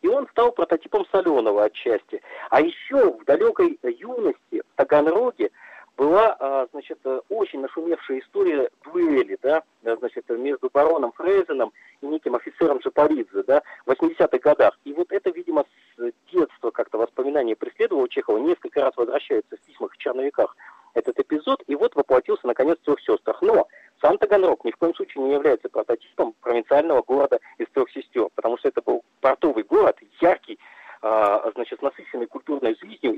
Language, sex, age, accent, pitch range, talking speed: Russian, male, 40-59, native, 330-435 Hz, 150 wpm